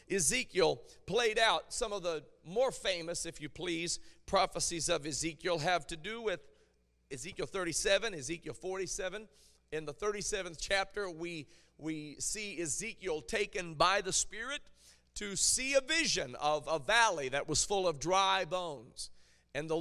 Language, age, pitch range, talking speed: English, 40-59, 155-205 Hz, 150 wpm